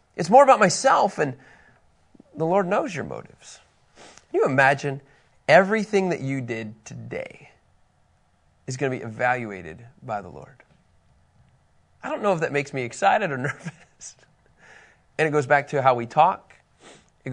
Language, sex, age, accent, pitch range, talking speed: English, male, 30-49, American, 125-170 Hz, 155 wpm